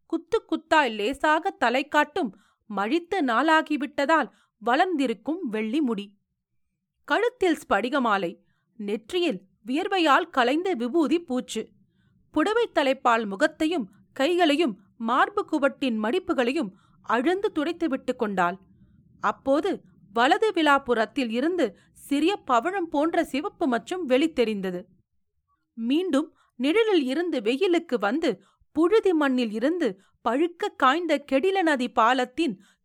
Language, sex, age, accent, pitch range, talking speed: Tamil, female, 40-59, native, 230-330 Hz, 90 wpm